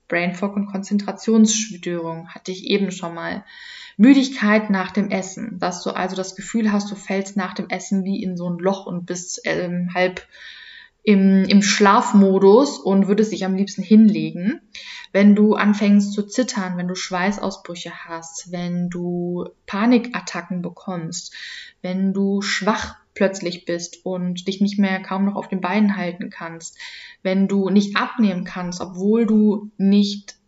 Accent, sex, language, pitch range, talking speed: German, female, German, 180-210 Hz, 155 wpm